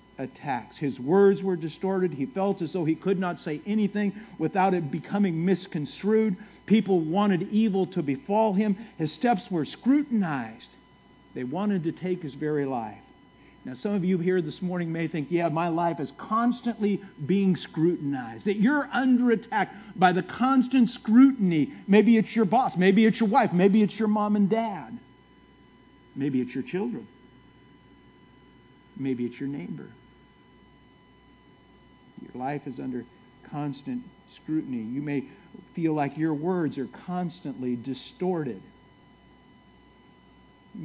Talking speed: 140 wpm